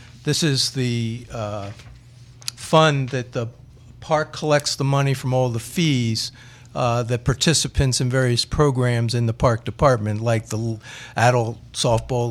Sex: male